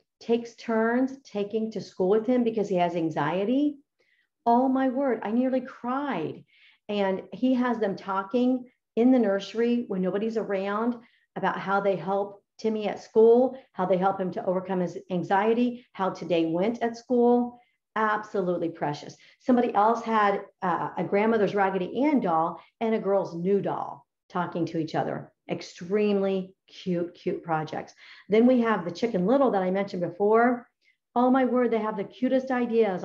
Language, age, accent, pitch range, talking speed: English, 50-69, American, 185-240 Hz, 165 wpm